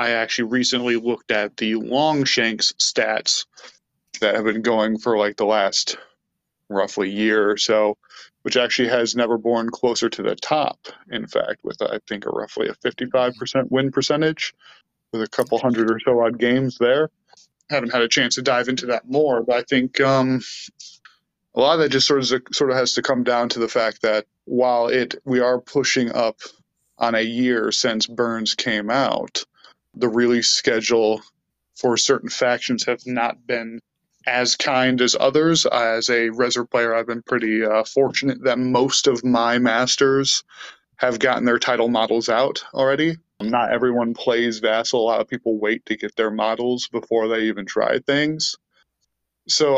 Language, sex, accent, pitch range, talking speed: English, male, American, 115-125 Hz, 175 wpm